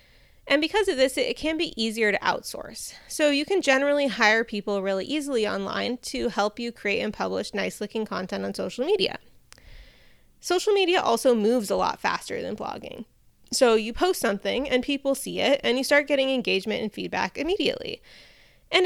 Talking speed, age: 180 wpm, 20-39